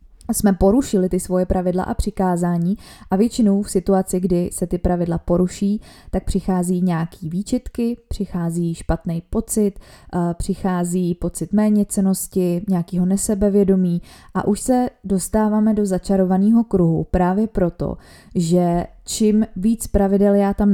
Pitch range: 180-205 Hz